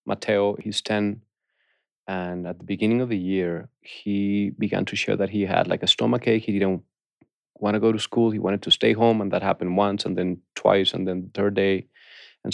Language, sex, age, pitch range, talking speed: English, male, 30-49, 95-110 Hz, 215 wpm